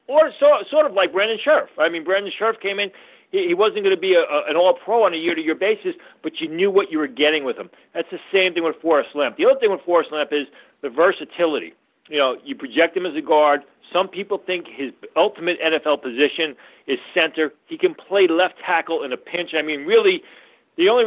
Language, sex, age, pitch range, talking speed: English, male, 40-59, 140-195 Hz, 220 wpm